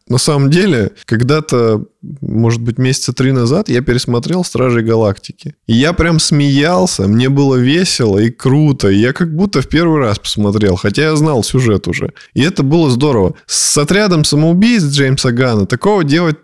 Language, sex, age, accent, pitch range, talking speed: Russian, male, 20-39, native, 115-155 Hz, 160 wpm